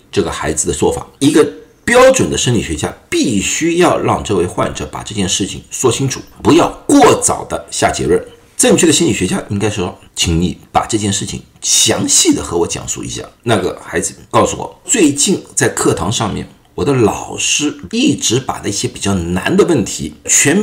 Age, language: 50-69, Chinese